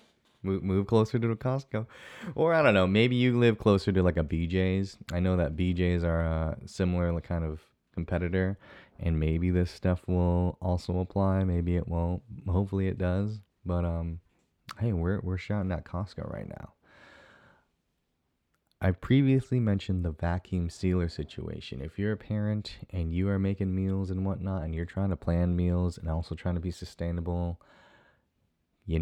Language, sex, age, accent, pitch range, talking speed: English, male, 20-39, American, 85-100 Hz, 165 wpm